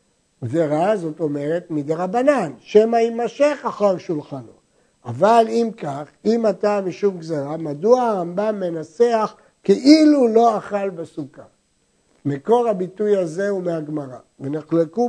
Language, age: Hebrew, 60-79